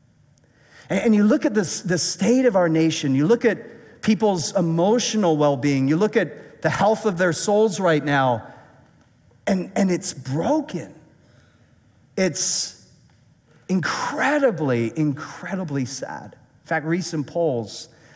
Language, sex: English, male